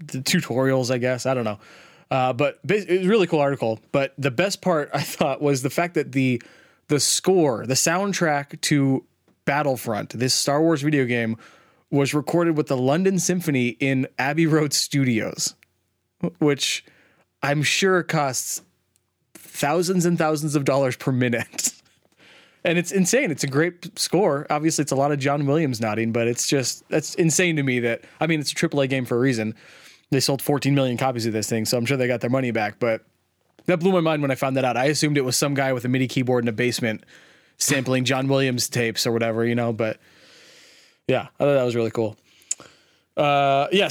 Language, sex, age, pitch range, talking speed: English, male, 20-39, 125-155 Hz, 200 wpm